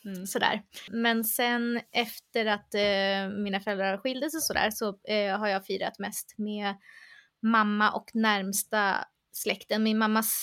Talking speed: 150 wpm